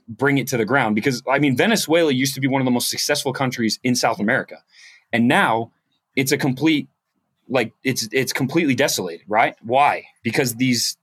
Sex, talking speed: male, 190 wpm